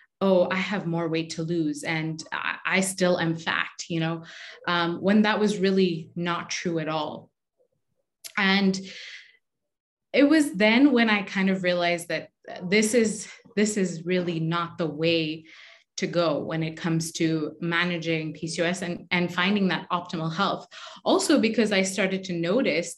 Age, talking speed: 20-39, 155 wpm